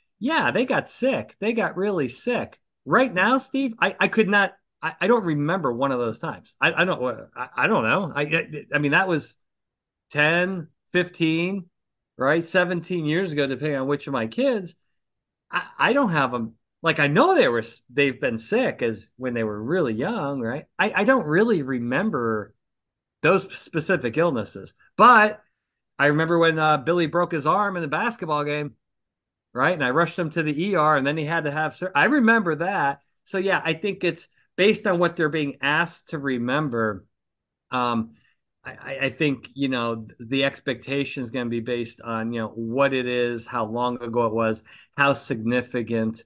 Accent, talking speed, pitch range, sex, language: American, 190 wpm, 125-180 Hz, male, English